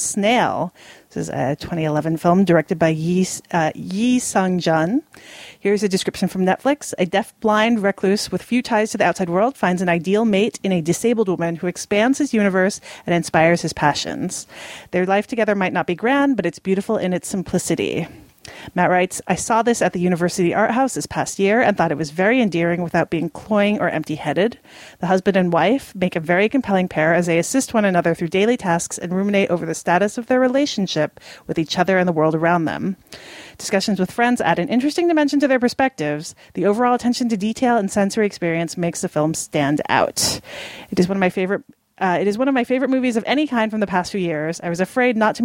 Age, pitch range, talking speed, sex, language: 30-49, 170-215 Hz, 215 wpm, female, English